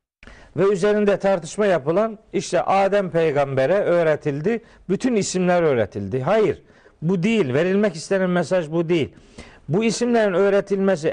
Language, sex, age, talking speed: Turkish, male, 50-69, 120 wpm